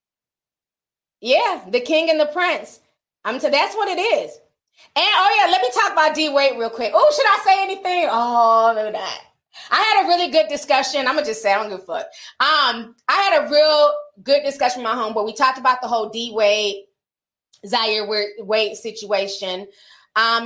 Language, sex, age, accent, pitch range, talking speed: English, female, 20-39, American, 210-305 Hz, 200 wpm